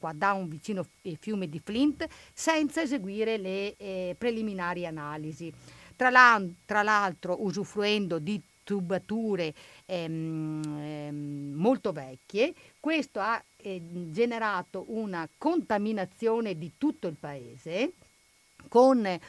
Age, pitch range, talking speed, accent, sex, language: 50-69, 170-220 Hz, 95 wpm, native, female, Italian